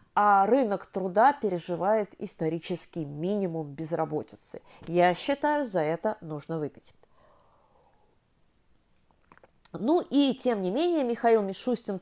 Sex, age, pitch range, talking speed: female, 30-49, 170-255 Hz, 100 wpm